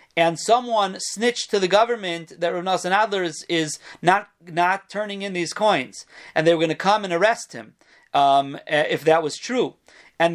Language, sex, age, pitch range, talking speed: English, male, 40-59, 165-215 Hz, 190 wpm